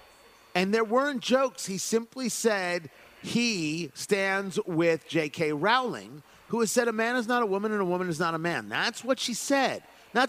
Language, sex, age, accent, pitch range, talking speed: English, male, 40-59, American, 190-245 Hz, 190 wpm